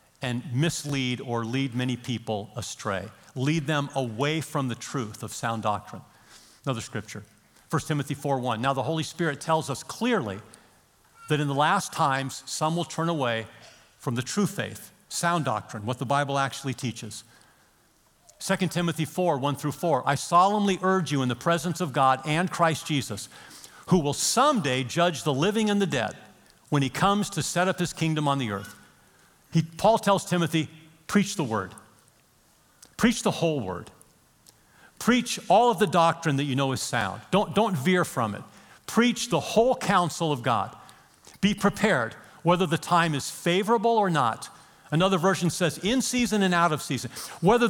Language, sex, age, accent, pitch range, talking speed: English, male, 50-69, American, 135-200 Hz, 170 wpm